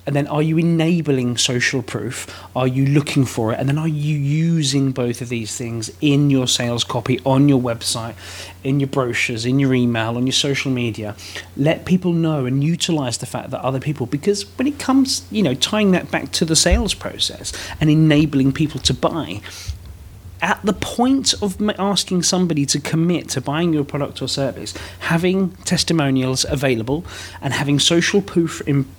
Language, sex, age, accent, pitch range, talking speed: English, male, 30-49, British, 125-160 Hz, 180 wpm